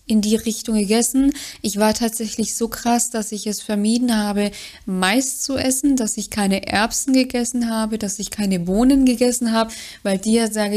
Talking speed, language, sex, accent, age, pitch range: 185 wpm, German, female, German, 20-39, 195-215 Hz